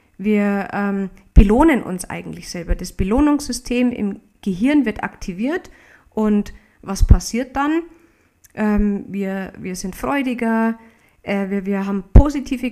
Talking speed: 125 wpm